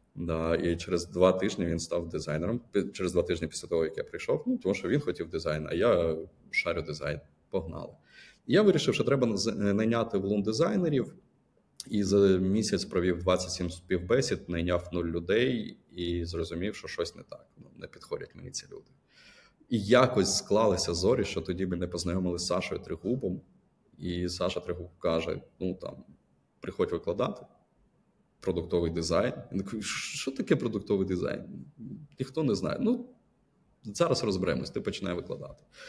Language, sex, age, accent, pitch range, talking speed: Ukrainian, male, 20-39, native, 85-100 Hz, 150 wpm